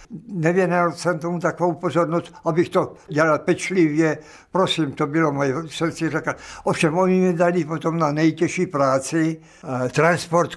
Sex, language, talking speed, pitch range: male, Czech, 140 wpm, 140-170 Hz